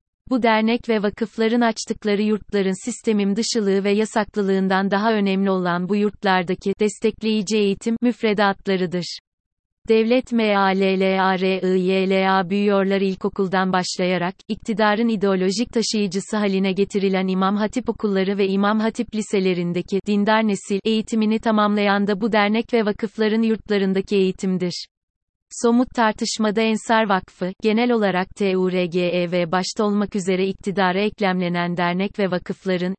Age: 30-49